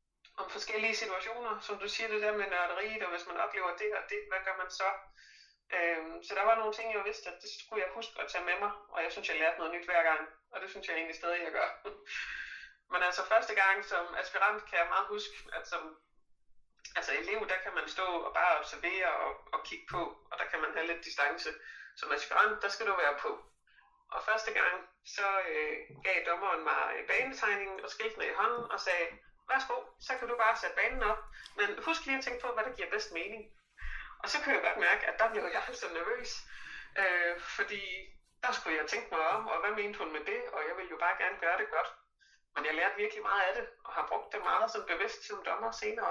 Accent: native